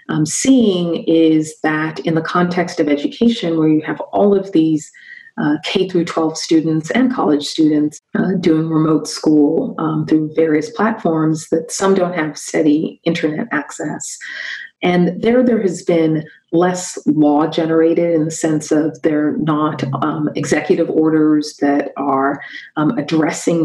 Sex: female